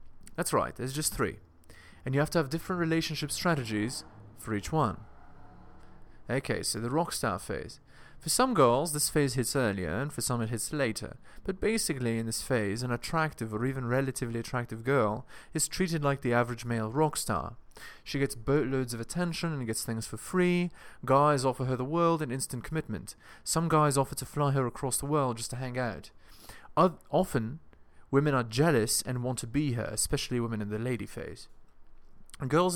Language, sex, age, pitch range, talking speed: English, male, 30-49, 115-155 Hz, 190 wpm